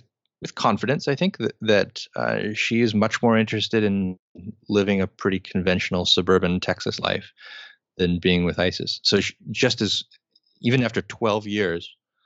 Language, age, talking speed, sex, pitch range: English, 30-49, 155 wpm, male, 85-105 Hz